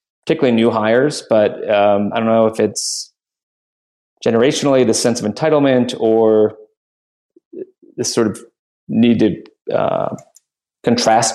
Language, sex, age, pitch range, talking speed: English, male, 20-39, 105-120 Hz, 120 wpm